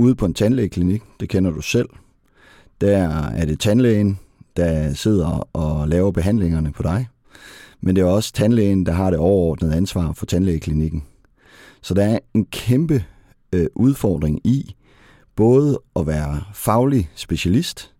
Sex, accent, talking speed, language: male, native, 145 wpm, Danish